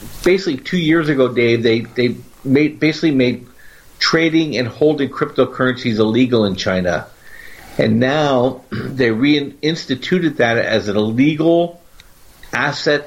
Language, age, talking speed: English, 50-69, 120 wpm